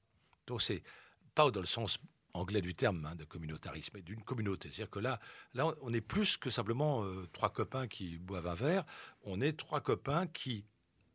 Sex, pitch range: male, 90-130 Hz